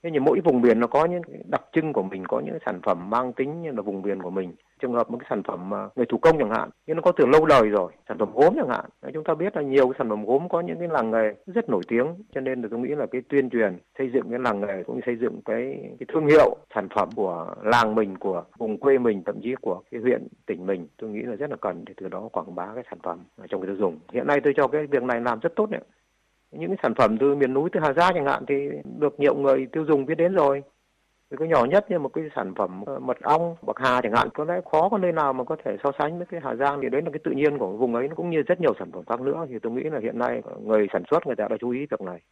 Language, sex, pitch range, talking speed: Vietnamese, male, 120-155 Hz, 305 wpm